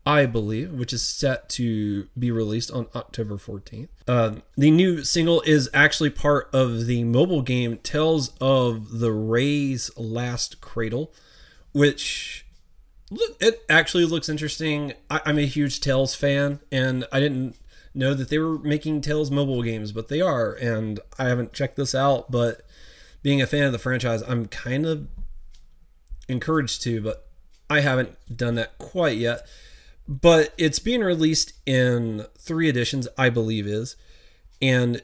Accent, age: American, 30-49